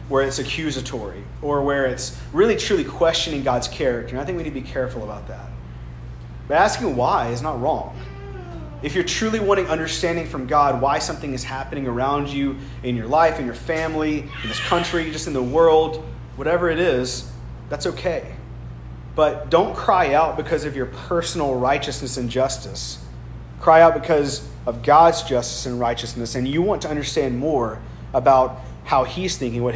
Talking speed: 175 wpm